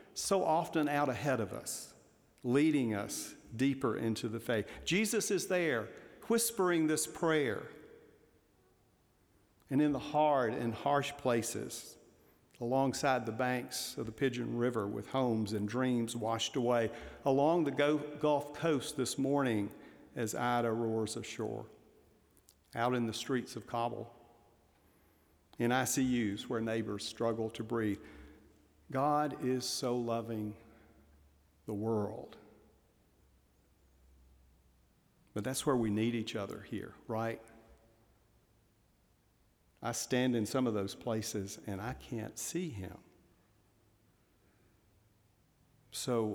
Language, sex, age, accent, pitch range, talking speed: English, male, 50-69, American, 110-135 Hz, 115 wpm